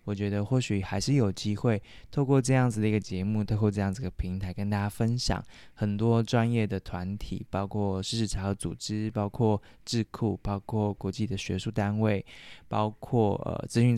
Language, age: Chinese, 20-39